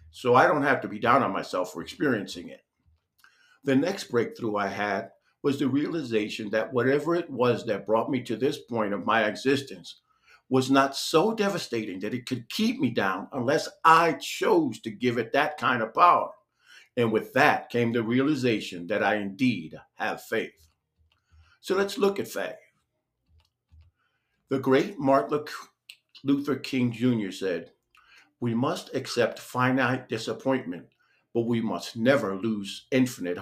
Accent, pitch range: American, 110-140 Hz